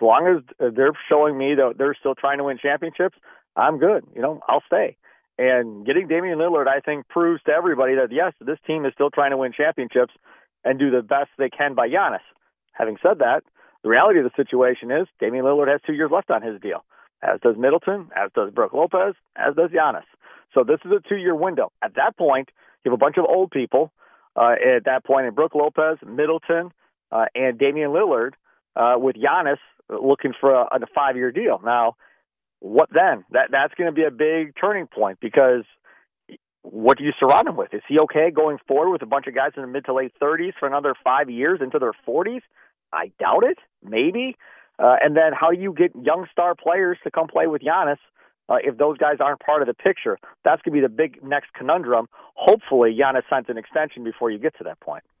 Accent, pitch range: American, 130-170 Hz